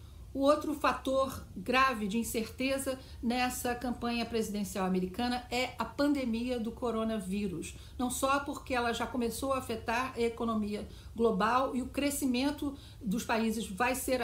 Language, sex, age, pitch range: Portuguese, female, 60-79, 225-280 Hz